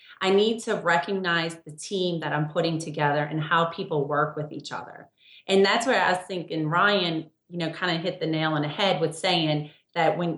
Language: English